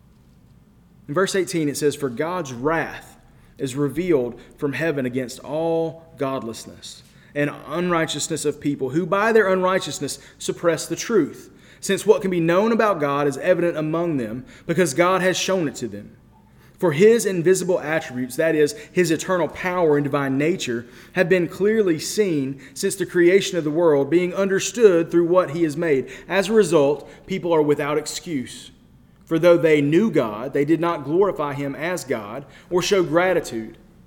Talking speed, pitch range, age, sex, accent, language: 165 wpm, 140-180 Hz, 30-49, male, American, English